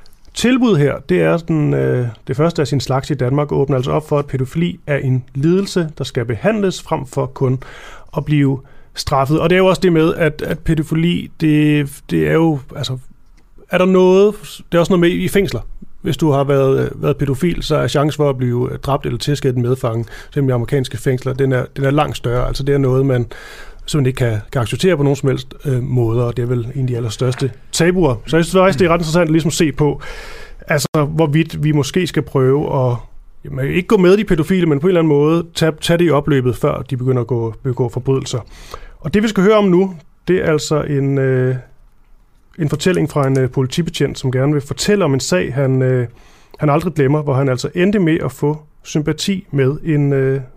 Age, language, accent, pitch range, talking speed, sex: 30-49, Danish, native, 130-170 Hz, 230 wpm, male